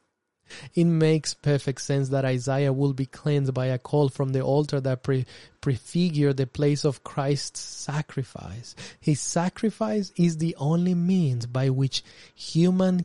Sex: male